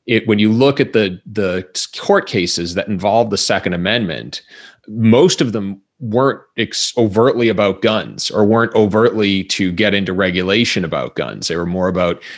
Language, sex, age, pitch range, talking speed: English, male, 30-49, 95-115 Hz, 165 wpm